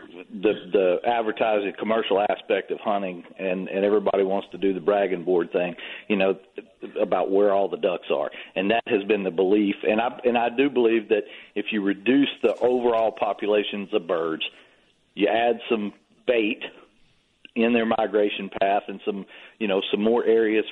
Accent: American